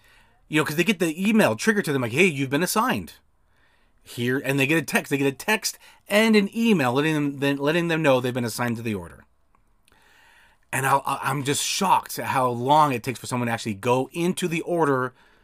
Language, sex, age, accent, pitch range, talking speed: English, male, 30-49, American, 120-155 Hz, 220 wpm